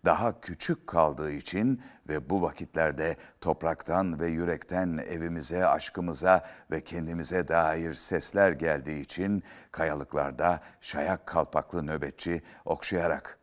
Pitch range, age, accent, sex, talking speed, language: 80-95 Hz, 60-79, native, male, 105 wpm, Turkish